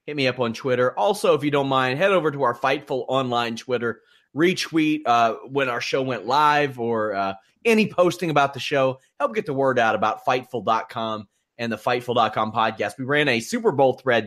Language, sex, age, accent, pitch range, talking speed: English, male, 30-49, American, 120-175 Hz, 200 wpm